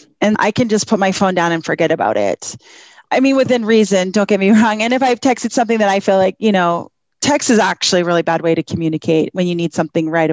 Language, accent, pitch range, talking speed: English, American, 190-245 Hz, 260 wpm